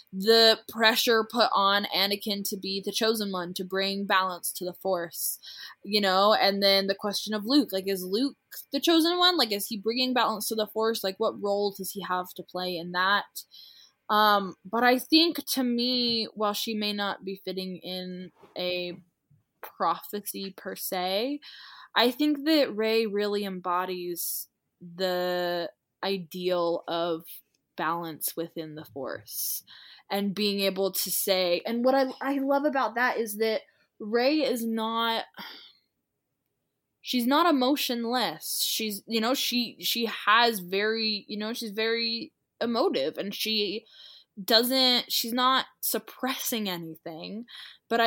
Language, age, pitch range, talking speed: English, 20-39, 185-235 Hz, 145 wpm